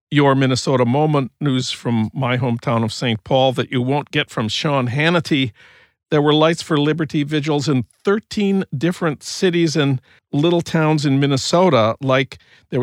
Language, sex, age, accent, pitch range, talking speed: English, male, 50-69, American, 130-170 Hz, 160 wpm